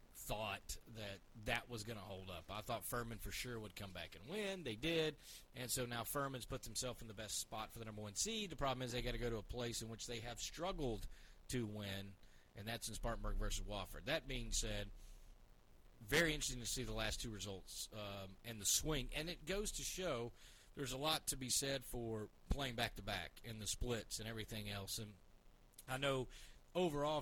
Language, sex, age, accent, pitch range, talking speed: English, male, 30-49, American, 105-130 Hz, 215 wpm